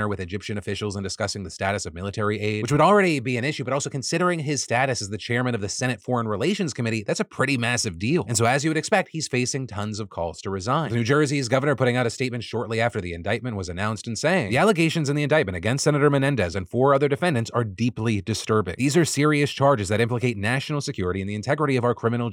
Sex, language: male, English